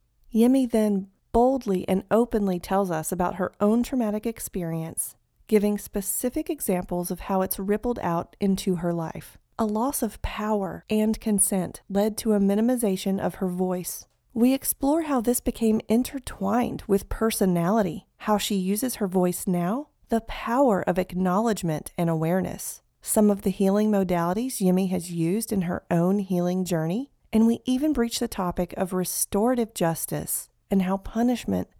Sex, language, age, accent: female, English, 40-59, American